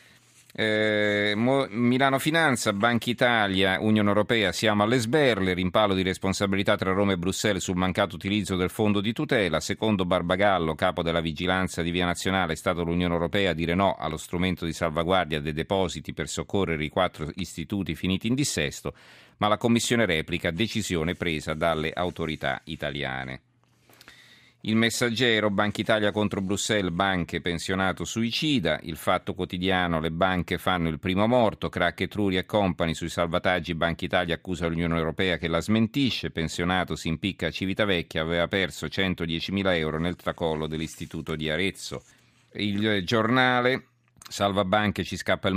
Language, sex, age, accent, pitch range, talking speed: Italian, male, 40-59, native, 85-105 Hz, 155 wpm